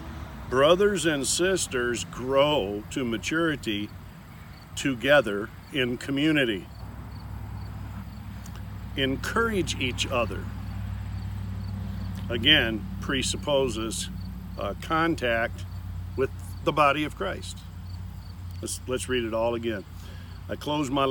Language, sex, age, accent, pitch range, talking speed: English, male, 50-69, American, 100-135 Hz, 85 wpm